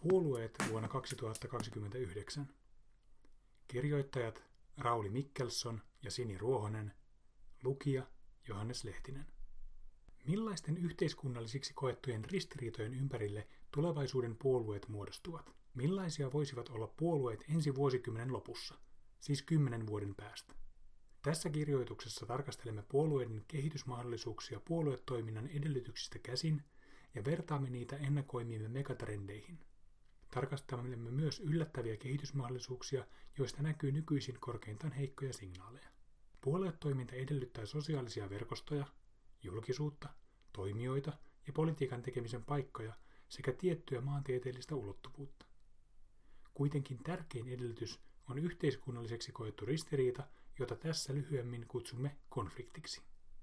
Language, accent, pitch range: Finnish, native, 115-145 Hz